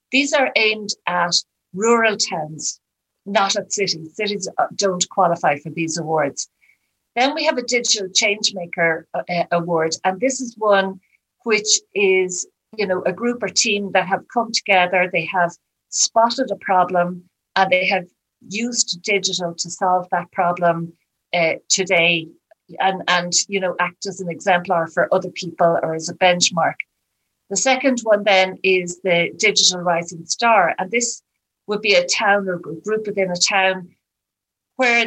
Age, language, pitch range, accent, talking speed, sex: 50-69, English, 175-215 Hz, Irish, 155 wpm, female